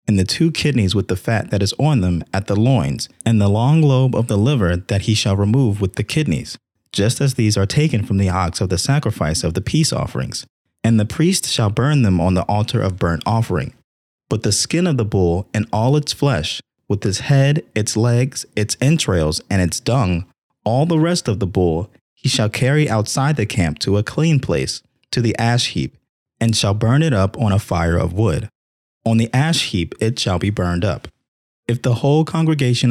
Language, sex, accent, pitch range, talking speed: English, male, American, 100-130 Hz, 215 wpm